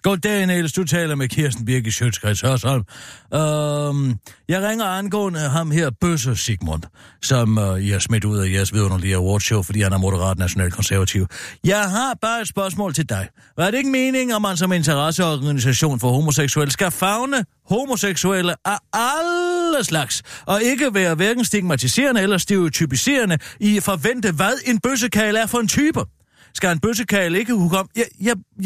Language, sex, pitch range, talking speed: Danish, male, 130-200 Hz, 170 wpm